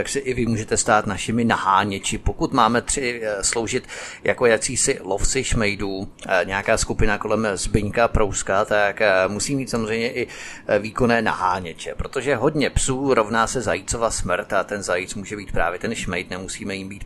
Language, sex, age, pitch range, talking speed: Czech, male, 30-49, 100-120 Hz, 160 wpm